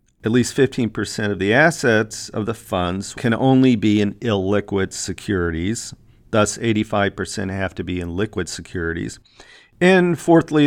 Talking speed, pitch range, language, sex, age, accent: 140 wpm, 95-125 Hz, English, male, 40-59, American